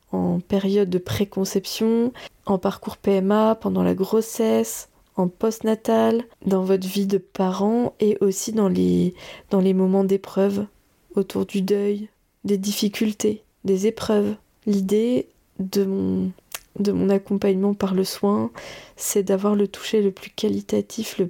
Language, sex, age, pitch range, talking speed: French, female, 20-39, 195-215 Hz, 140 wpm